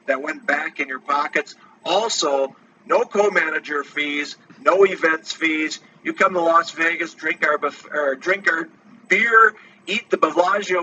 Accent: American